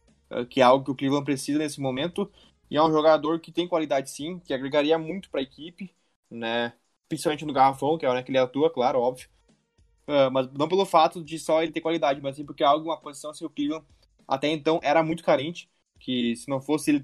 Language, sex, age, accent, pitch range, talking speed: Portuguese, male, 20-39, Brazilian, 130-160 Hz, 235 wpm